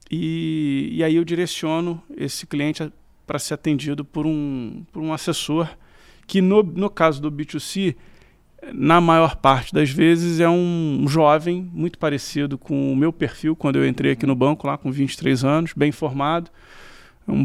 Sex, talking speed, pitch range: male, 165 wpm, 135-165 Hz